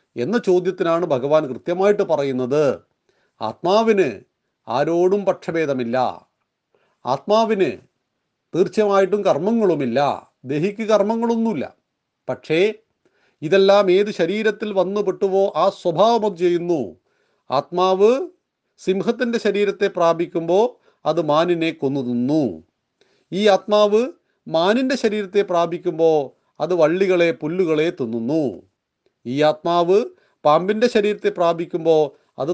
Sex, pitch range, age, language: male, 160-210 Hz, 40-59, Malayalam